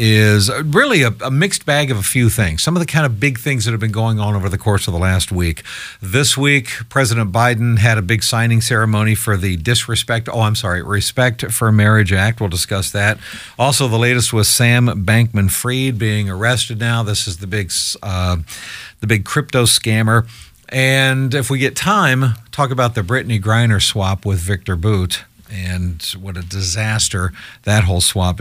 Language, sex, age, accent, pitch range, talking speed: English, male, 50-69, American, 105-135 Hz, 190 wpm